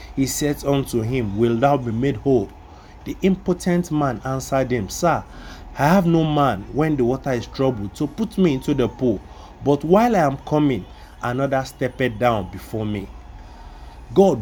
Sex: male